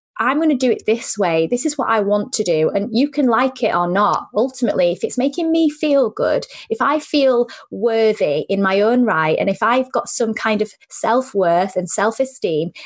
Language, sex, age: English, female, 20-39